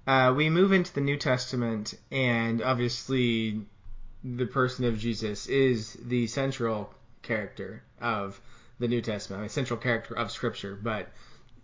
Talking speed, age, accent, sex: 150 wpm, 20-39, American, male